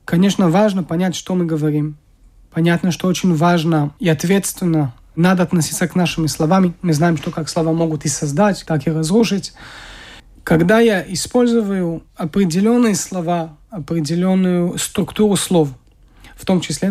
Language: Russian